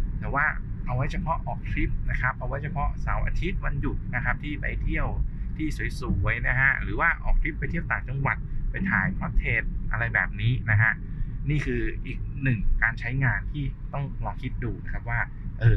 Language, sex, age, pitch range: Thai, male, 20-39, 100-130 Hz